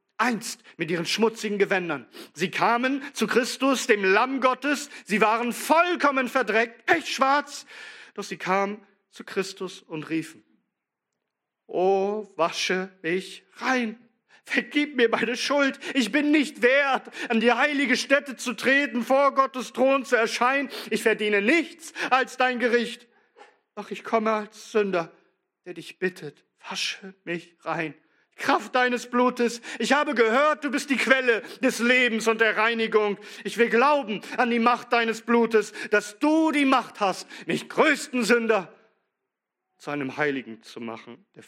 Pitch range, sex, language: 190-265 Hz, male, German